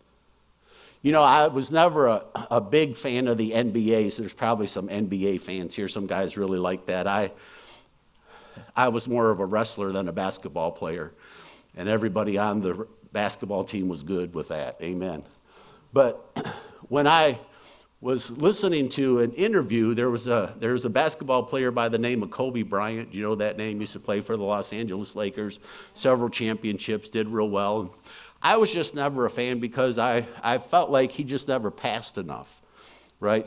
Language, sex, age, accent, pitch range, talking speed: English, male, 50-69, American, 105-130 Hz, 185 wpm